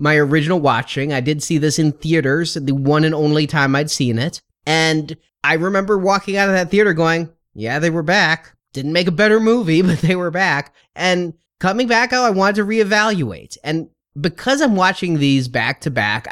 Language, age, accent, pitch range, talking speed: English, 30-49, American, 140-180 Hz, 200 wpm